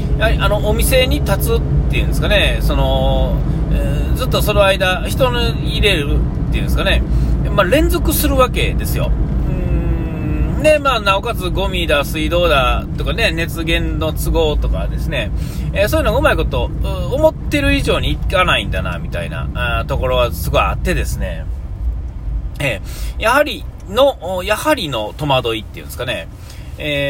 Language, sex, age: Japanese, male, 40-59